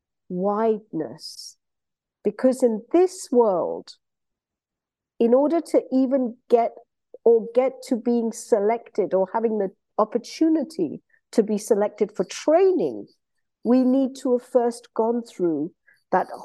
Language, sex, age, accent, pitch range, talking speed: English, female, 50-69, British, 205-260 Hz, 115 wpm